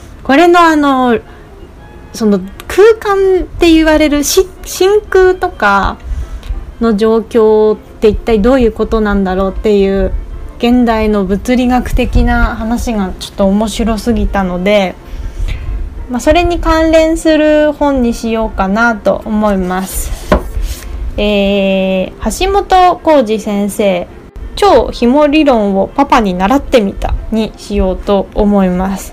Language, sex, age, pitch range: Japanese, female, 20-39, 205-295 Hz